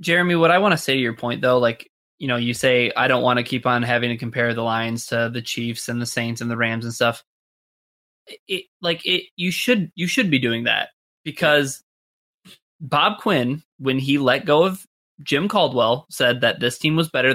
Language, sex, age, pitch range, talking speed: English, male, 20-39, 130-180 Hz, 220 wpm